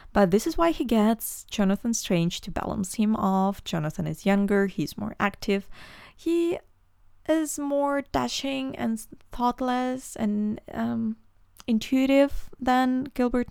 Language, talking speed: English, 130 wpm